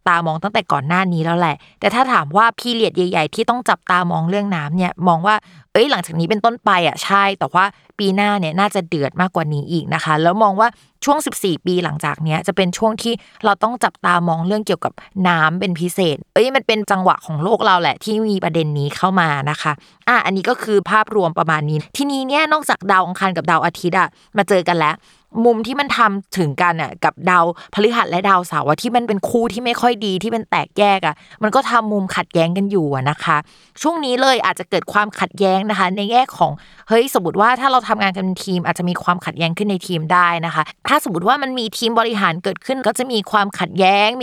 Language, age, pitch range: Thai, 20-39, 175-220 Hz